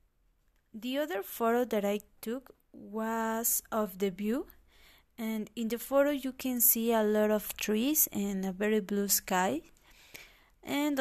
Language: English